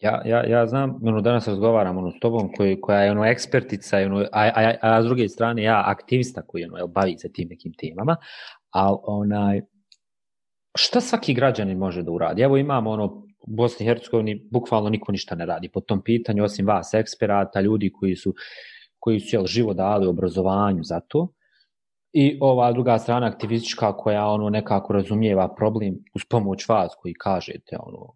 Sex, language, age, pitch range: male, English, 30-49, 100-130 Hz